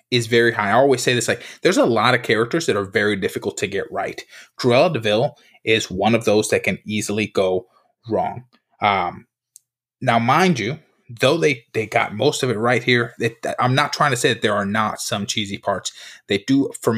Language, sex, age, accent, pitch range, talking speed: English, male, 20-39, American, 110-130 Hz, 210 wpm